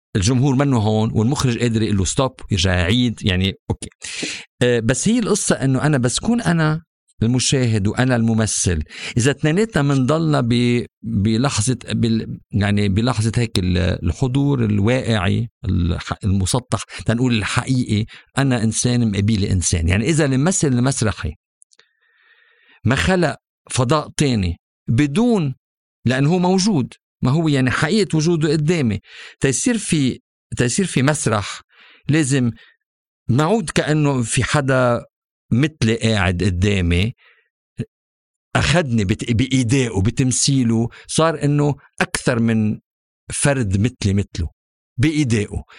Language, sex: Arabic, male